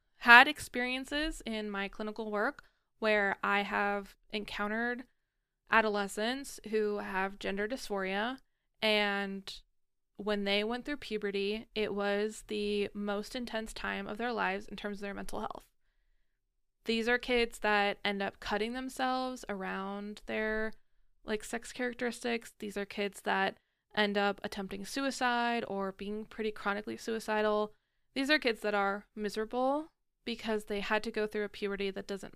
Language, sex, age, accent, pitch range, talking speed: English, female, 20-39, American, 205-235 Hz, 145 wpm